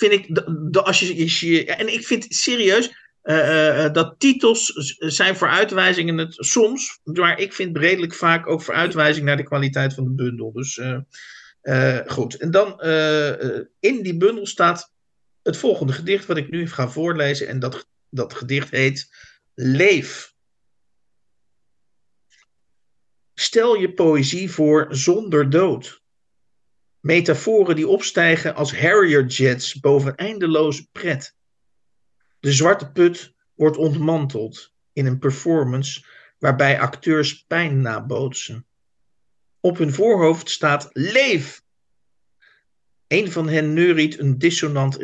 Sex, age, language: male, 50-69, Dutch